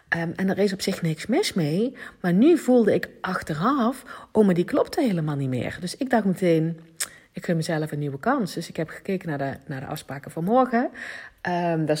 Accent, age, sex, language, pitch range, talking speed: Dutch, 40-59, female, Dutch, 140-190 Hz, 215 wpm